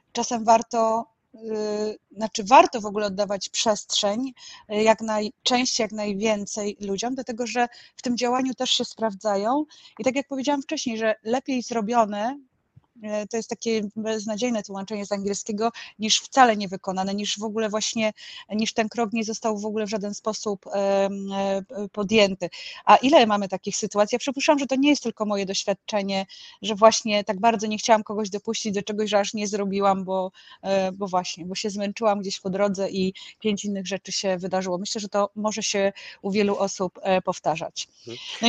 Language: Polish